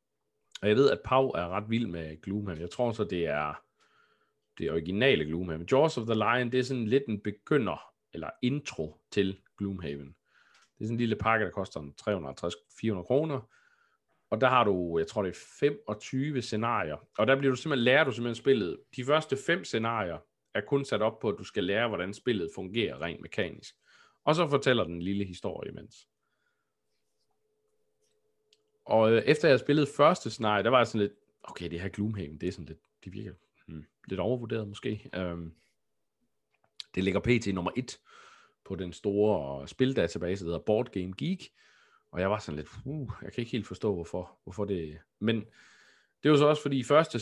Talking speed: 190 wpm